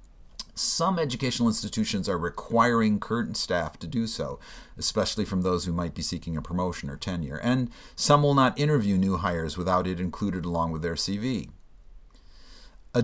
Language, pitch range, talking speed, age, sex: English, 90-120 Hz, 165 wpm, 50-69, male